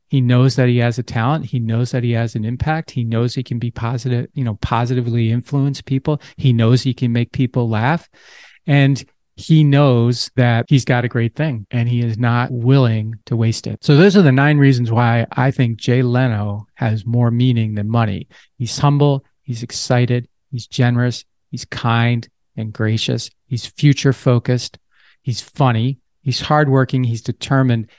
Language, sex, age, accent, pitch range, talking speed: English, male, 40-59, American, 115-135 Hz, 185 wpm